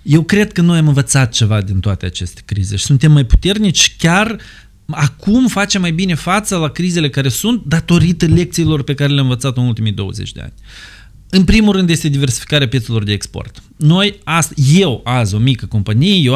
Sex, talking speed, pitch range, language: male, 190 wpm, 115-155 Hz, Romanian